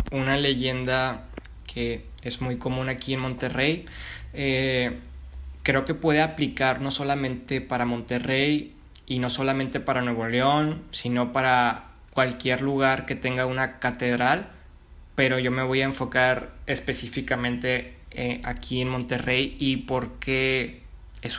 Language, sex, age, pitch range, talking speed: Spanish, male, 20-39, 120-135 Hz, 130 wpm